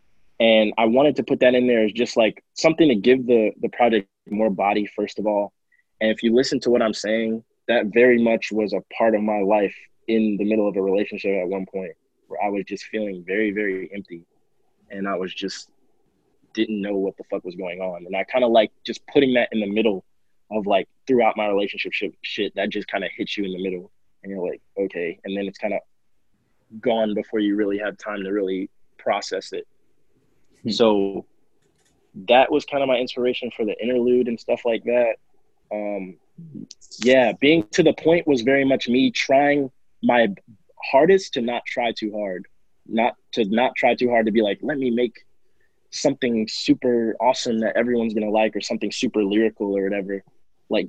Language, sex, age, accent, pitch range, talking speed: English, male, 20-39, American, 100-125 Hz, 200 wpm